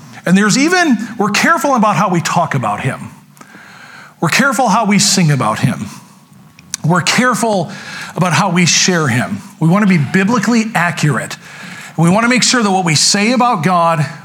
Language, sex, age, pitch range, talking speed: English, male, 40-59, 155-200 Hz, 175 wpm